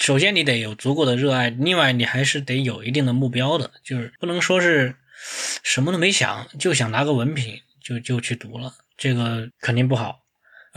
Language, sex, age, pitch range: Chinese, male, 20-39, 120-145 Hz